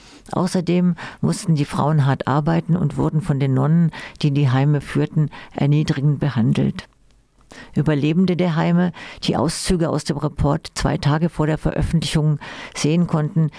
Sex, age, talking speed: female, 50-69, 145 wpm